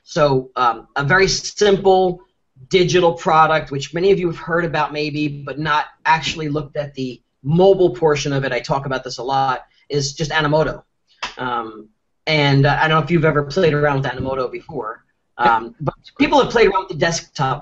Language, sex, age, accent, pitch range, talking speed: English, male, 40-59, American, 145-200 Hz, 195 wpm